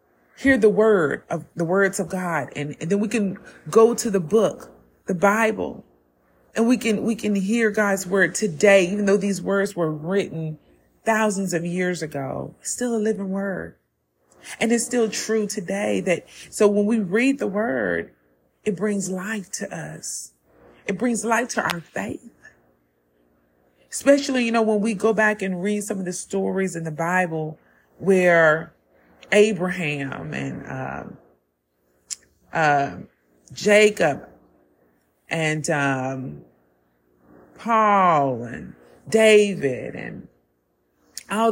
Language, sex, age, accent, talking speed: English, female, 40-59, American, 135 wpm